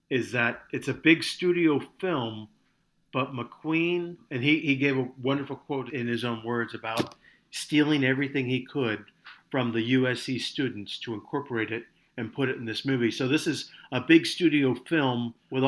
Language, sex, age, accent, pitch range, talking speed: English, male, 50-69, American, 115-135 Hz, 175 wpm